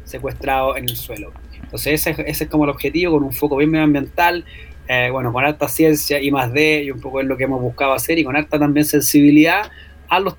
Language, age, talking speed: Spanish, 20-39, 235 wpm